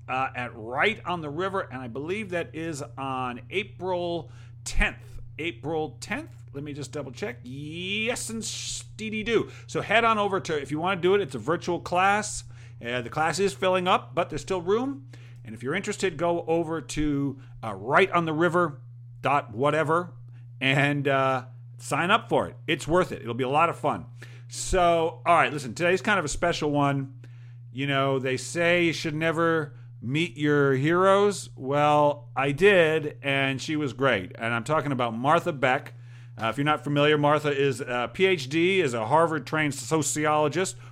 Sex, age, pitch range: male, 50-69, 125-170 Hz